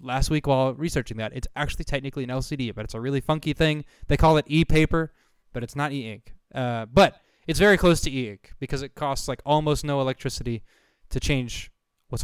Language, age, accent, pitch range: English, 20-39, American, 115-155 Hz